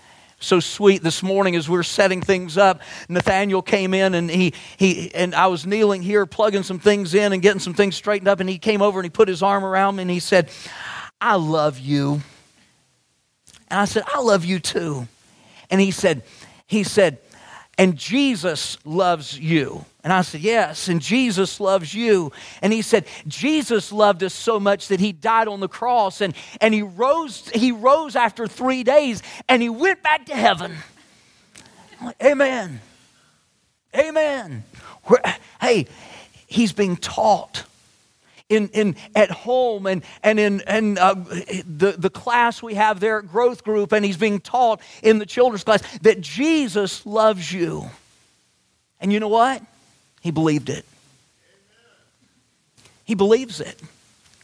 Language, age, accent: English, 40-59, American